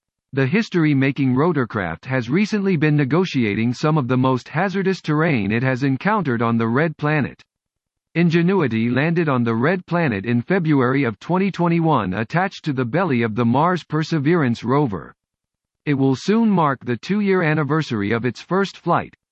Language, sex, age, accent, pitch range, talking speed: English, male, 50-69, American, 125-175 Hz, 155 wpm